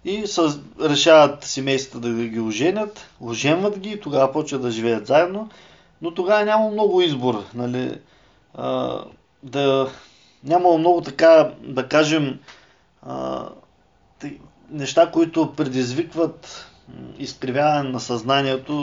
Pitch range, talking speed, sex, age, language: 125-160 Hz, 95 wpm, male, 20-39, Bulgarian